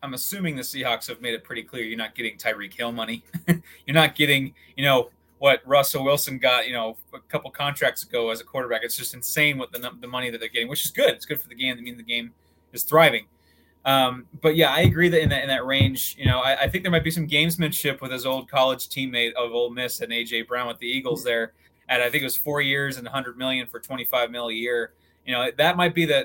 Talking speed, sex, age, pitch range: 260 wpm, male, 20-39, 120-150 Hz